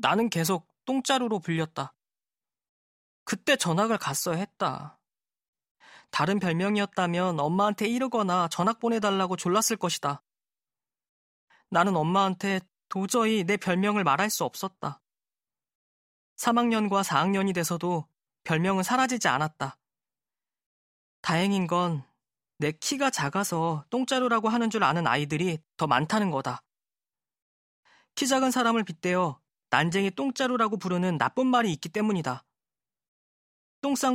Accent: native